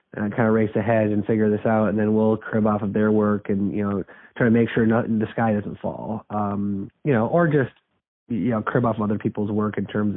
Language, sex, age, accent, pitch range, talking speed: English, male, 30-49, American, 105-125 Hz, 265 wpm